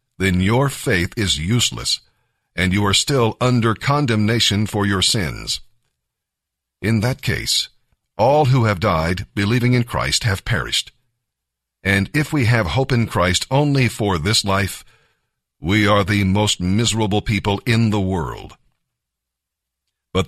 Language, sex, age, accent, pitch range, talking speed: English, male, 50-69, American, 95-125 Hz, 140 wpm